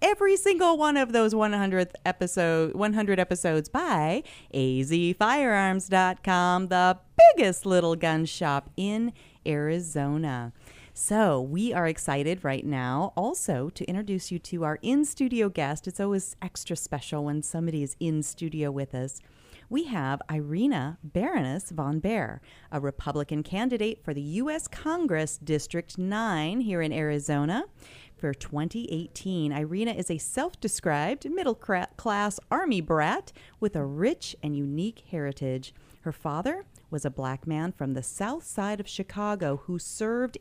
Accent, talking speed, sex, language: American, 135 wpm, female, English